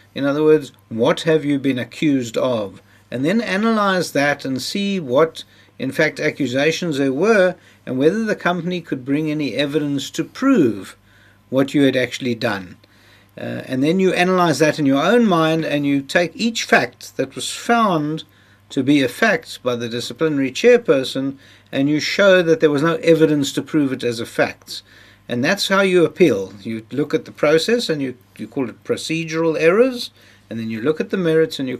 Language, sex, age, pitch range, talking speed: English, male, 60-79, 120-165 Hz, 190 wpm